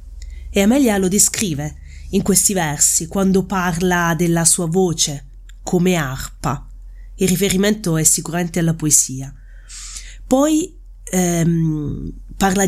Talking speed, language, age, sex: 110 wpm, Italian, 20-39, female